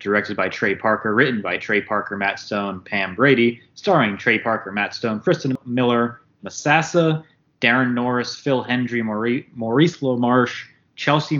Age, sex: 20-39, male